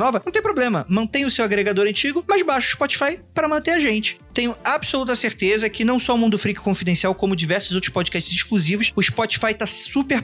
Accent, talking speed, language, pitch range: Brazilian, 210 wpm, Portuguese, 180-240 Hz